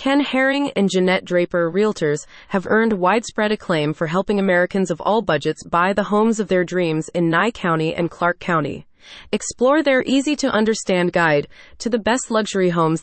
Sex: female